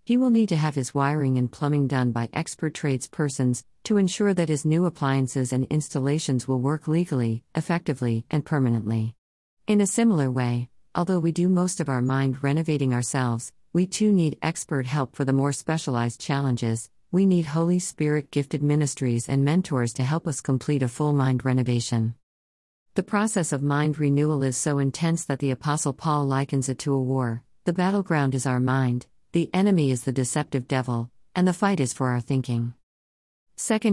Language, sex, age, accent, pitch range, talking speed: English, female, 50-69, American, 130-160 Hz, 180 wpm